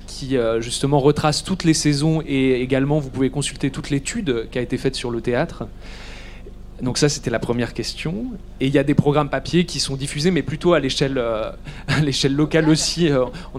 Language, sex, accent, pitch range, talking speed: French, male, French, 130-165 Hz, 205 wpm